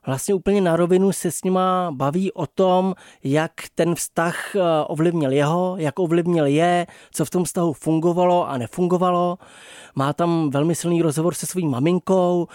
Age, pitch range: 20-39, 155-180 Hz